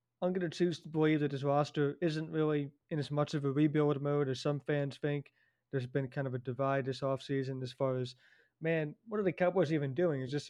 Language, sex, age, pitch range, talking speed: English, male, 20-39, 135-150 Hz, 245 wpm